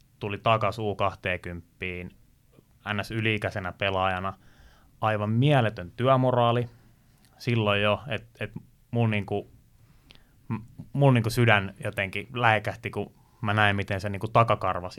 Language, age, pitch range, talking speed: Finnish, 20-39, 95-120 Hz, 100 wpm